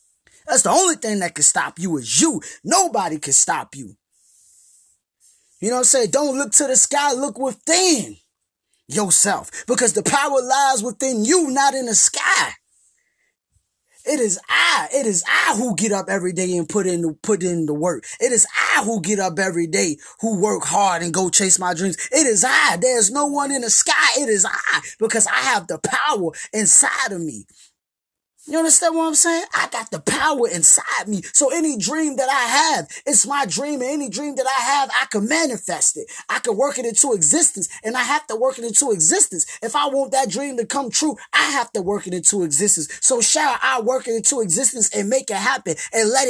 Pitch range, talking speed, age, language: 205-290 Hz, 210 wpm, 20-39, English